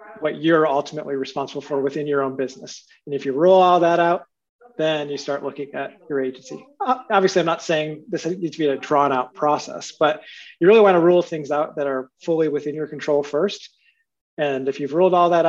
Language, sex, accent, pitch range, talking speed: English, male, American, 140-180 Hz, 215 wpm